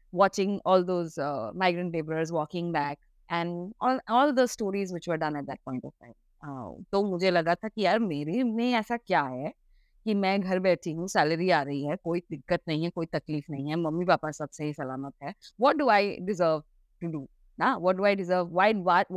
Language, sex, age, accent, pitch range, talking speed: Hindi, female, 20-39, native, 155-210 Hz, 220 wpm